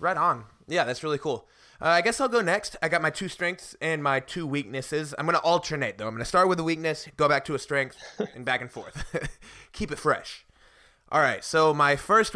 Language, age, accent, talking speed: English, 20-39, American, 245 wpm